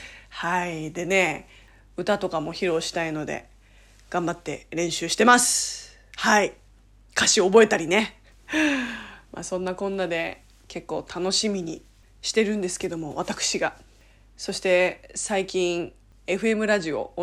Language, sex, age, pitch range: Japanese, female, 20-39, 170-240 Hz